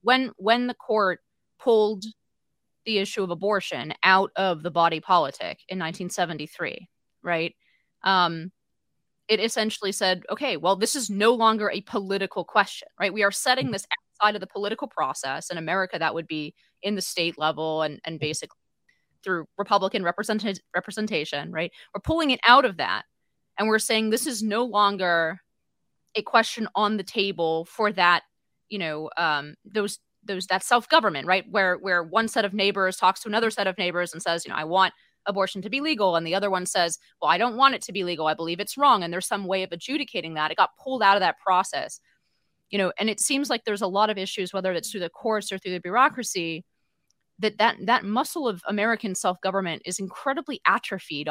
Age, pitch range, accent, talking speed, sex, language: 20-39, 180-225 Hz, American, 195 wpm, female, English